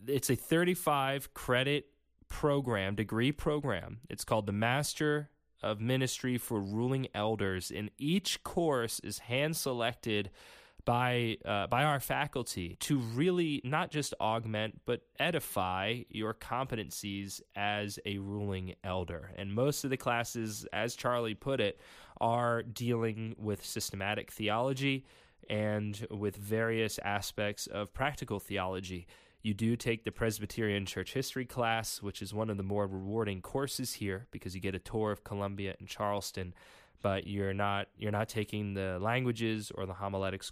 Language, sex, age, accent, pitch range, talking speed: English, male, 20-39, American, 100-130 Hz, 140 wpm